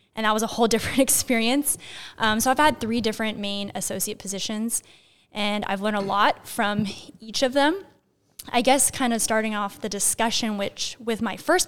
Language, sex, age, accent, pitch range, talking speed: English, female, 10-29, American, 205-240 Hz, 190 wpm